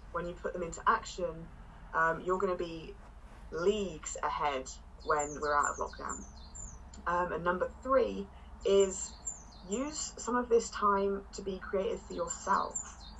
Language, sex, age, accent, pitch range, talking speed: English, female, 20-39, British, 160-200 Hz, 150 wpm